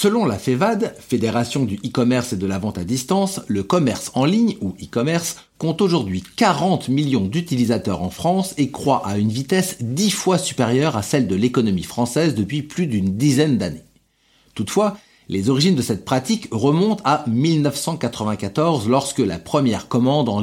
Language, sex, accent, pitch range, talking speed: French, male, French, 110-170 Hz, 165 wpm